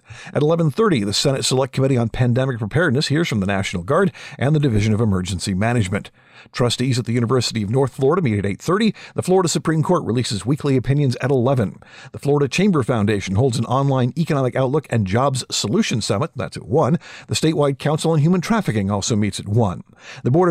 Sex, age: male, 50-69